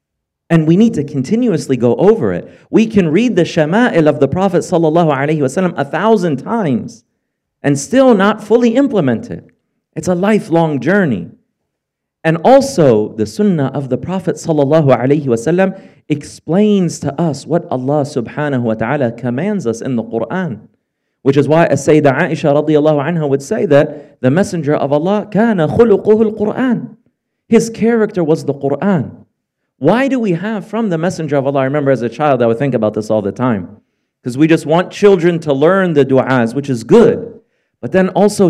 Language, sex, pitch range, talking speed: English, male, 120-185 Hz, 170 wpm